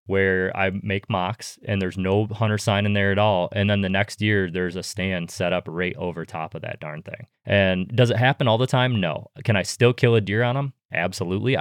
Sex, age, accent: male, 20-39, American